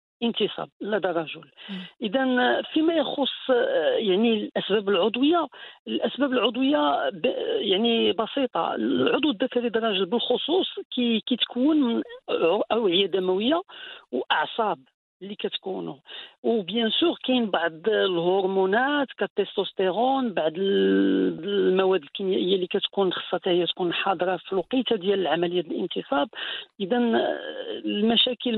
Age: 50-69